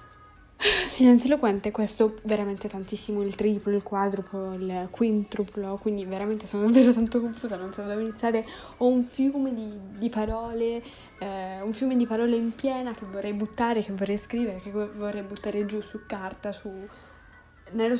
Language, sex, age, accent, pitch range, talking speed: Italian, female, 10-29, native, 200-230 Hz, 160 wpm